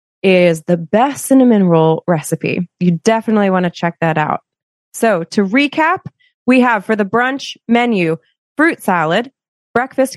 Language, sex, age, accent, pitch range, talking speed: English, female, 20-39, American, 175-215 Hz, 150 wpm